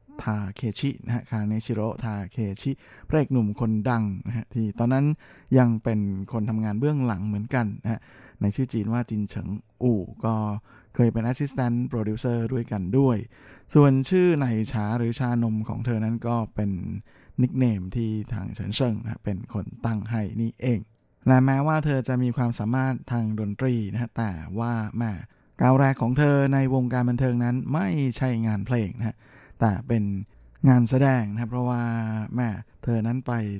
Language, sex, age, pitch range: Thai, male, 20-39, 105-125 Hz